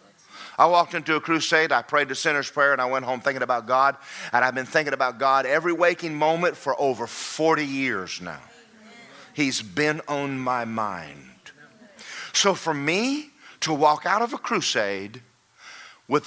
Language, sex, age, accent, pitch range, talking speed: English, male, 40-59, American, 140-220 Hz, 170 wpm